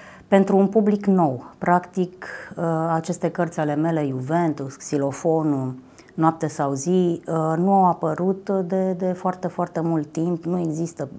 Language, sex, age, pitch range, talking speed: Romanian, female, 30-49, 145-185 Hz, 135 wpm